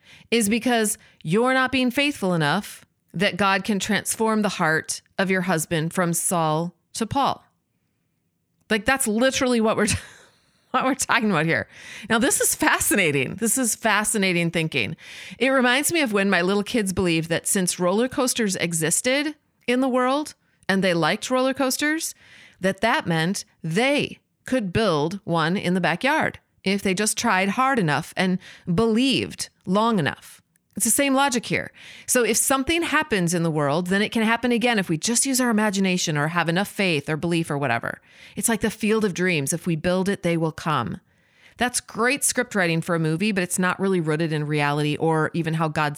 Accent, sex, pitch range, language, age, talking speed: American, female, 165-240 Hz, English, 30-49, 185 wpm